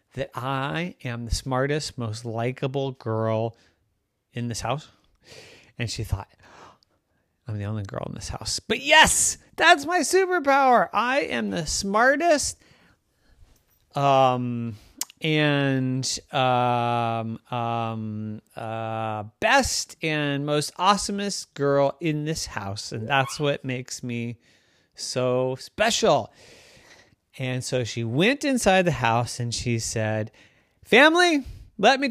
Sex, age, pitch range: male, 30-49, 115-190 Hz